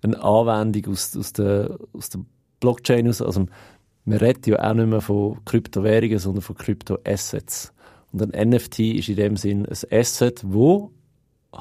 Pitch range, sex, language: 100-115 Hz, male, German